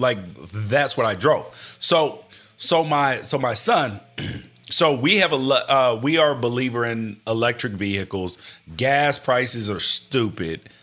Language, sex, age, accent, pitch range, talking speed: English, male, 30-49, American, 110-145 Hz, 150 wpm